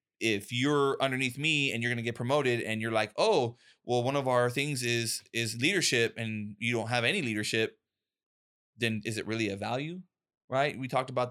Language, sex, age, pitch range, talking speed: English, male, 20-39, 110-130 Hz, 200 wpm